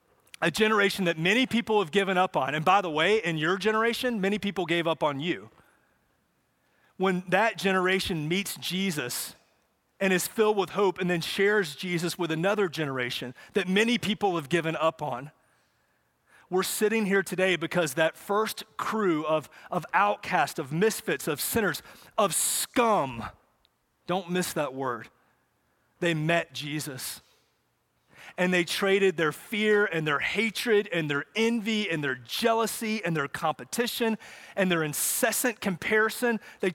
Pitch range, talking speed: 165-210 Hz, 150 wpm